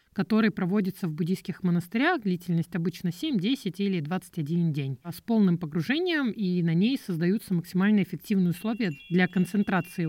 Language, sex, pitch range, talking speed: Russian, male, 170-210 Hz, 145 wpm